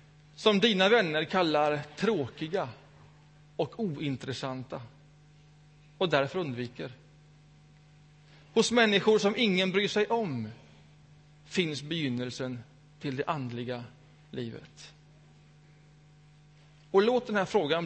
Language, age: Swedish, 30-49